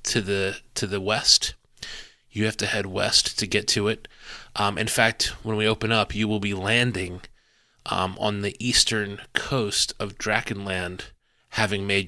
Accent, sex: American, male